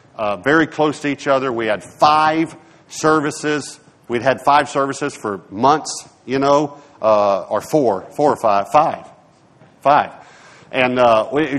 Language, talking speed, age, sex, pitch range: English, 130 wpm, 50-69, male, 130-160 Hz